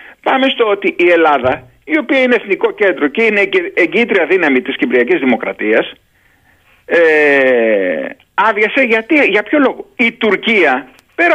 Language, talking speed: Greek, 135 wpm